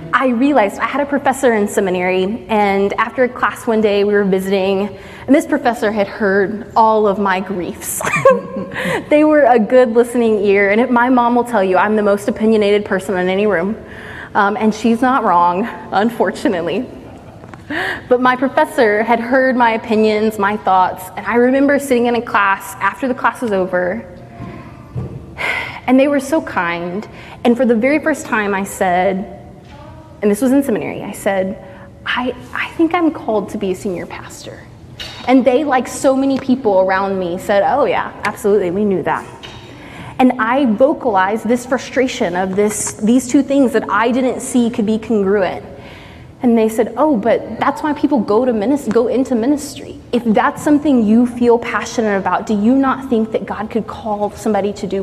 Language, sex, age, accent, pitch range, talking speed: English, female, 20-39, American, 200-255 Hz, 180 wpm